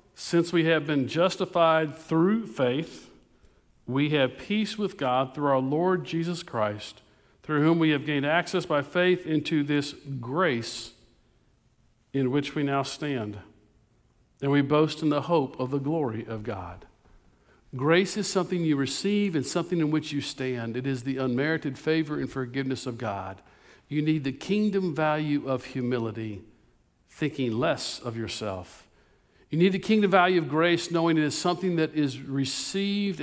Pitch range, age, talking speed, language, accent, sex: 125-165 Hz, 50-69, 160 wpm, English, American, male